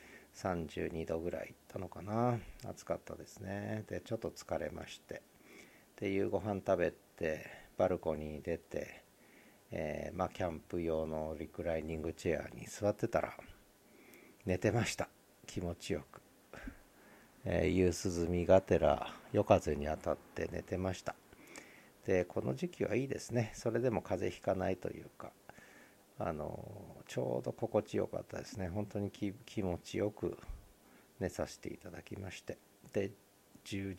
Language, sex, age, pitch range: Japanese, male, 50-69, 85-105 Hz